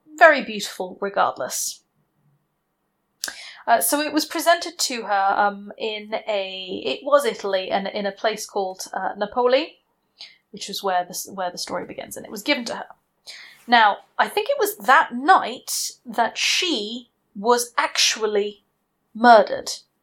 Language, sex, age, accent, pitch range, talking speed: English, female, 30-49, British, 195-255 Hz, 145 wpm